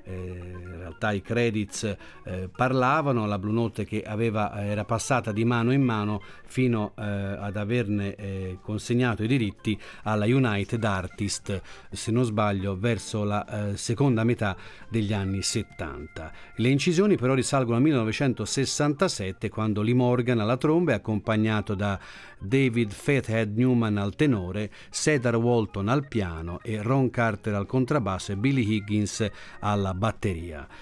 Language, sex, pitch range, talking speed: Italian, male, 105-130 Hz, 140 wpm